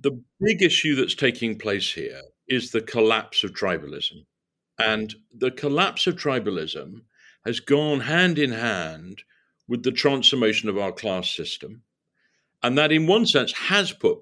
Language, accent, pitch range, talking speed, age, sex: English, British, 120-175 Hz, 150 wpm, 50-69, male